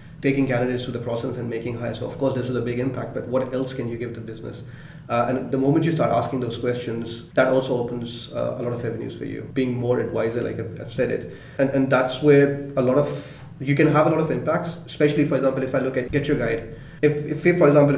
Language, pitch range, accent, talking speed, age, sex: English, 120-140 Hz, Indian, 265 wpm, 30-49, male